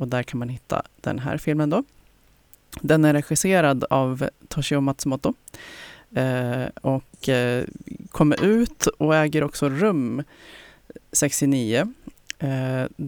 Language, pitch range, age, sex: Swedish, 135-155 Hz, 30-49, female